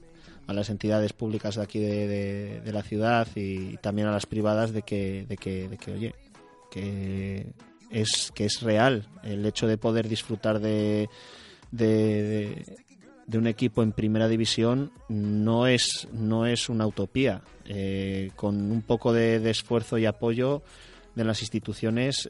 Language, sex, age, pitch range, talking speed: Spanish, male, 20-39, 105-115 Hz, 160 wpm